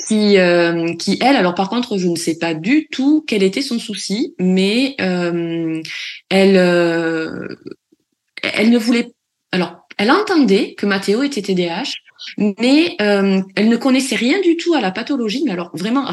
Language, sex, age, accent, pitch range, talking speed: French, female, 20-39, French, 185-255 Hz, 165 wpm